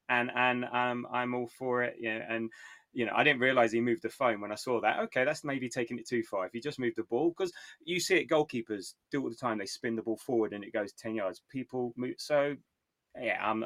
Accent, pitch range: British, 105-125 Hz